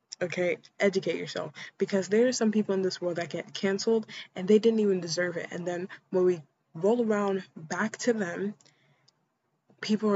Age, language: 20-39, English